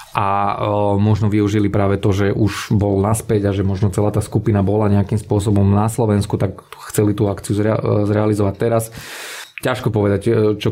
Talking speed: 160 wpm